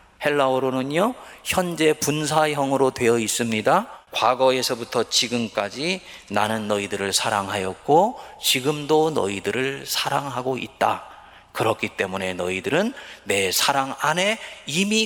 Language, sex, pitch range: Korean, male, 120-160 Hz